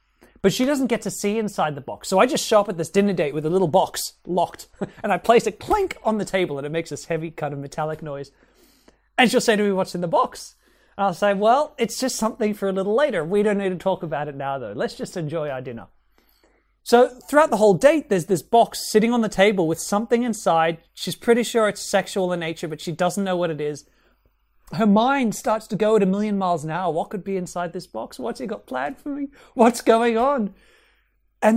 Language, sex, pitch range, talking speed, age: English, male, 175-230 Hz, 245 wpm, 30-49